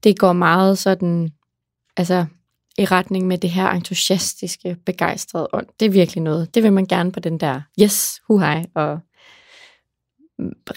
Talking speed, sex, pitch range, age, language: 155 wpm, female, 170-200 Hz, 20-39, English